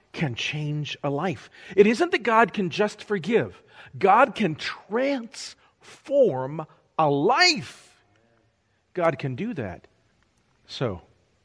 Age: 40-59